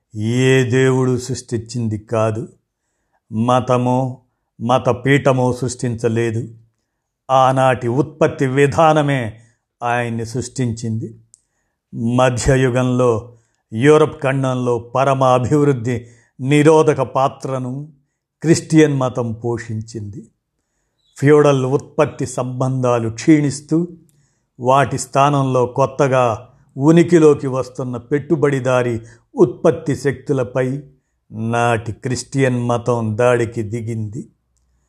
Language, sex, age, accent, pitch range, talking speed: Telugu, male, 50-69, native, 115-140 Hz, 70 wpm